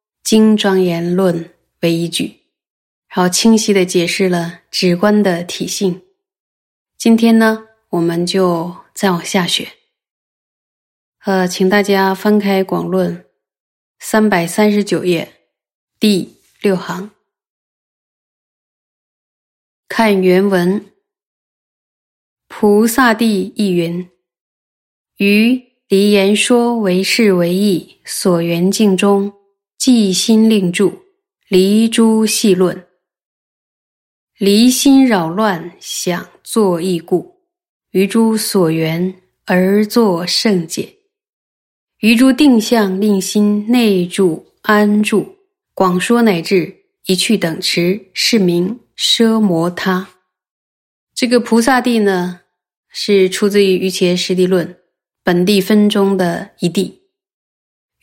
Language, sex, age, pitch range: Chinese, female, 20-39, 180-220 Hz